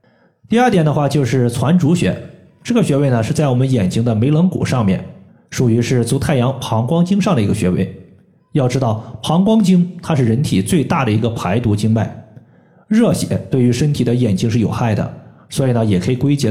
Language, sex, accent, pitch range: Chinese, male, native, 115-150 Hz